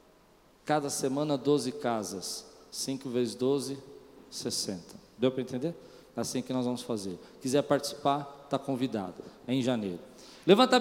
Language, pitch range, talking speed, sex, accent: Portuguese, 165-265 Hz, 140 wpm, male, Brazilian